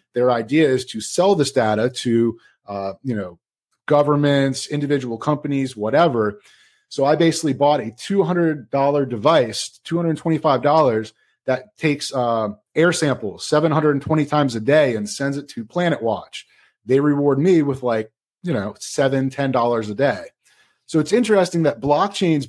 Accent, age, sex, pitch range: American, 30-49, male, 125-160 Hz